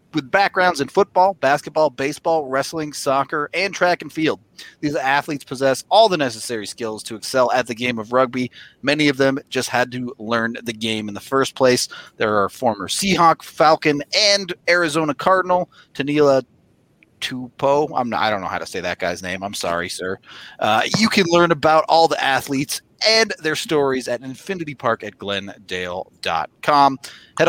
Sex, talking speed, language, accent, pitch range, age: male, 170 wpm, English, American, 115-150 Hz, 30-49